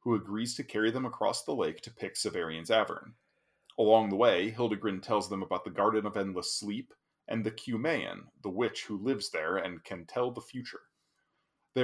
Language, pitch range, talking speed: English, 95-120 Hz, 195 wpm